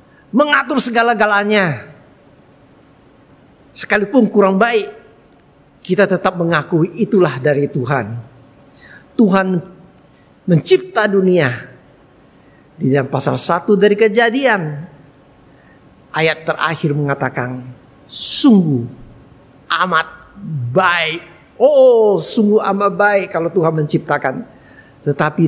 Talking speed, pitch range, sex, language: 80 wpm, 150-220 Hz, male, Indonesian